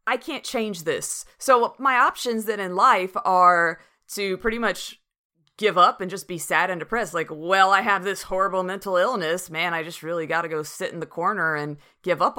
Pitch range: 170-215 Hz